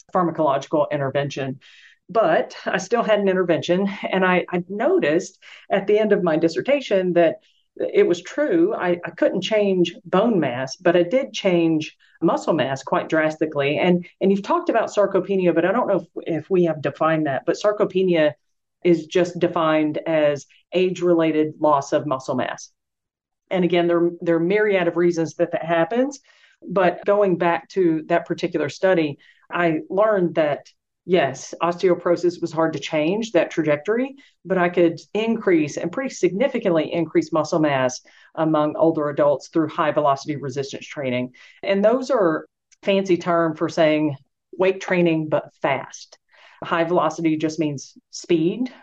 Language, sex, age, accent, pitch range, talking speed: English, female, 40-59, American, 160-195 Hz, 155 wpm